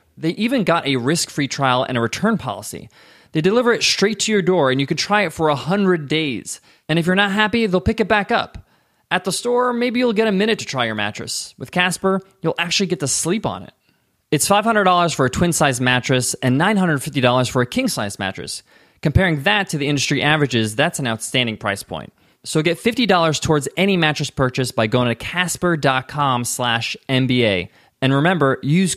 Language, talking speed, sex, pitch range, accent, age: English, 195 wpm, male, 125-180 Hz, American, 20-39